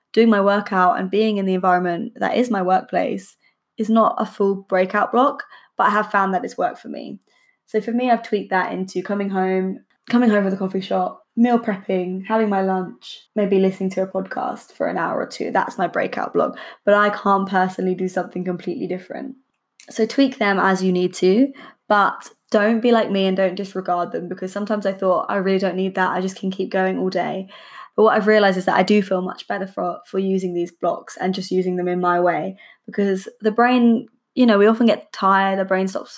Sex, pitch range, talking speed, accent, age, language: female, 185-220 Hz, 225 wpm, British, 10-29, English